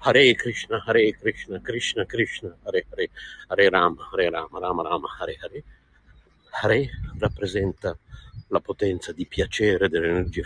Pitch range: 95-130 Hz